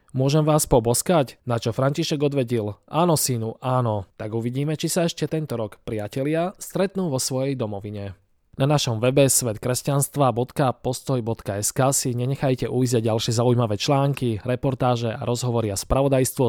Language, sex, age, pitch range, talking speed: Slovak, male, 20-39, 115-145 Hz, 135 wpm